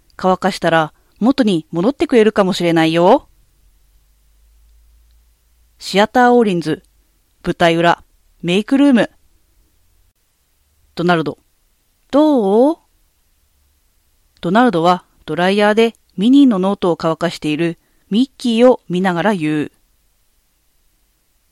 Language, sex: Japanese, female